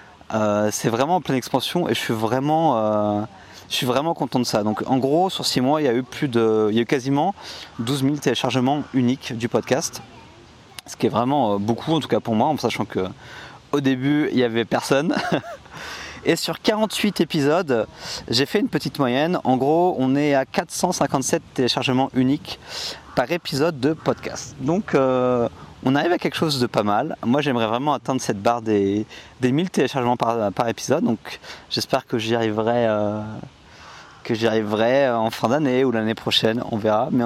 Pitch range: 115-145 Hz